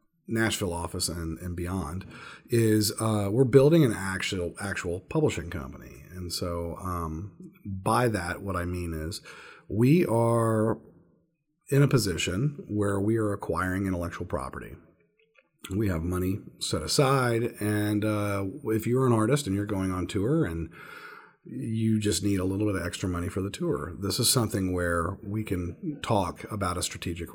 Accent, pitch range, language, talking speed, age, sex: American, 90-125 Hz, English, 160 wpm, 40-59, male